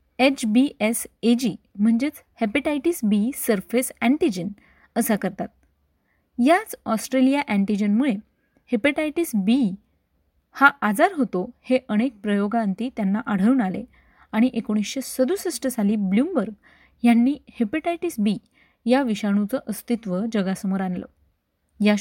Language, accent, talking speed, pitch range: Marathi, native, 105 wpm, 205-260 Hz